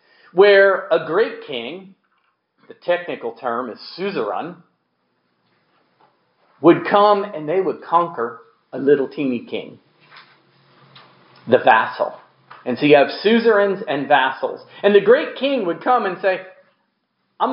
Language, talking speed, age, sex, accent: English, 125 wpm, 40-59, male, American